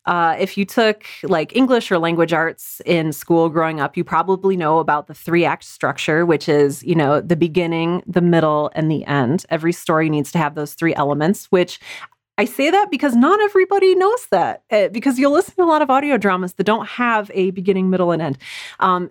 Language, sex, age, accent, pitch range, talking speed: English, female, 30-49, American, 165-205 Hz, 205 wpm